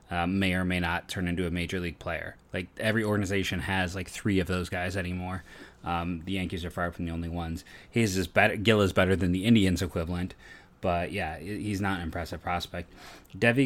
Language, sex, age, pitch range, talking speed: English, male, 30-49, 90-105 Hz, 210 wpm